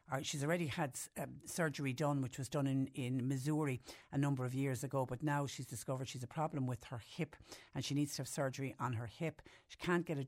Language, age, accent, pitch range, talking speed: English, 60-79, Irish, 135-155 Hz, 235 wpm